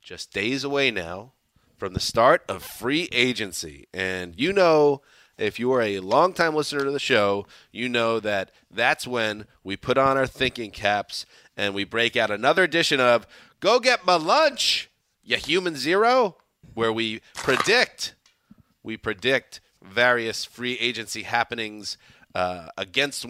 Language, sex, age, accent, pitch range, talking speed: English, male, 30-49, American, 100-135 Hz, 150 wpm